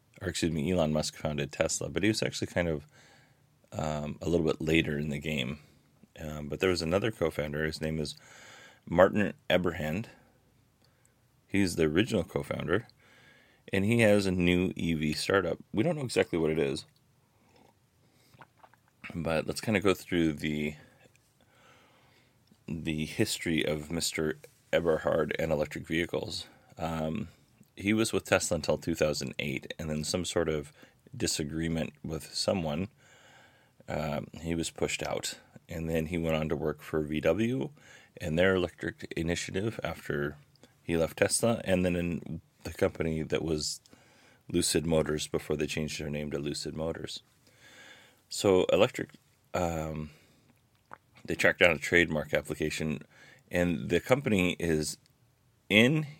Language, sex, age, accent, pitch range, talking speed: English, male, 30-49, American, 75-100 Hz, 145 wpm